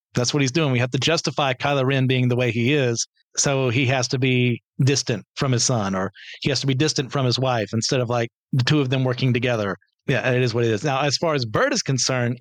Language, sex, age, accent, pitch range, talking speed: English, male, 40-59, American, 130-155 Hz, 265 wpm